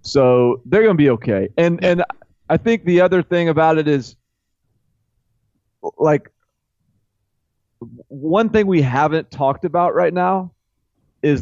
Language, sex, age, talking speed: English, male, 30-49, 135 wpm